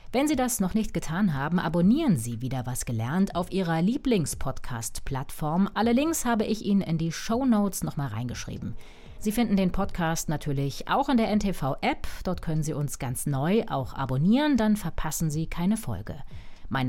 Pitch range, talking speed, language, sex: 140-220 Hz, 175 wpm, German, female